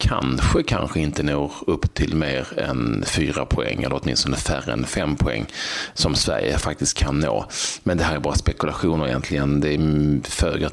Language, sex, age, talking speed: Swedish, male, 30-49, 170 wpm